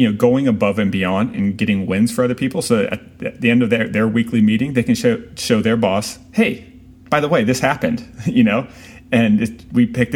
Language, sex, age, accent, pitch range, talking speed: English, male, 30-49, American, 100-125 Hz, 225 wpm